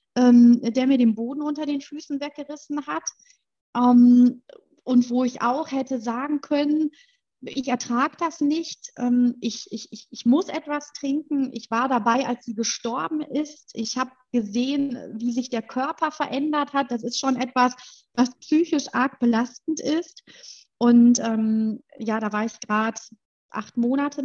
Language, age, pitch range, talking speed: German, 30-49, 225-285 Hz, 160 wpm